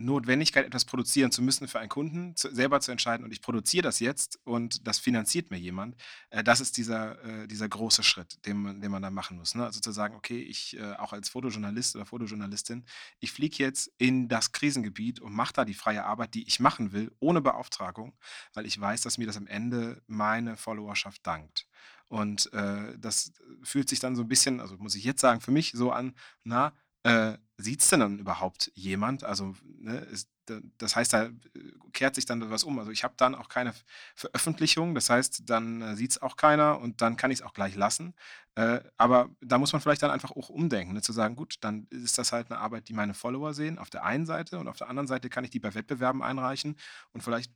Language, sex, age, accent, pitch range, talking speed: German, male, 30-49, German, 105-135 Hz, 220 wpm